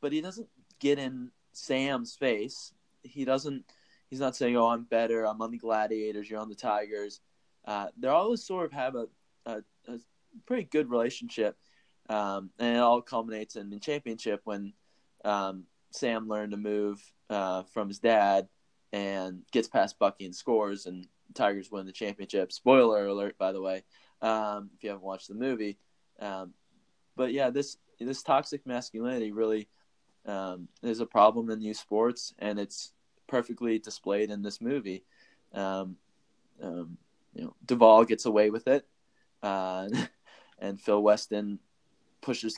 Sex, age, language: male, 20-39, English